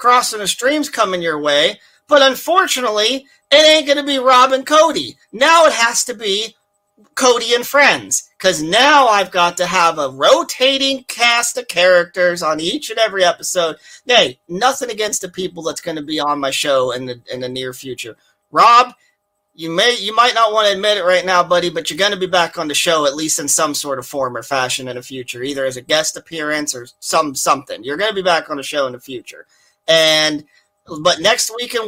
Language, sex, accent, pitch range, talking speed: English, male, American, 150-215 Hz, 215 wpm